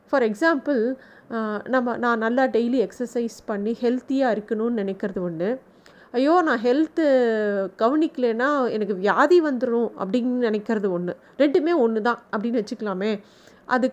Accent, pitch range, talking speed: native, 215-270 Hz, 120 wpm